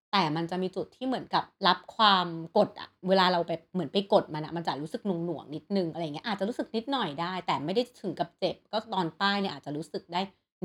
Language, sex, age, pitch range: Thai, female, 30-49, 165-220 Hz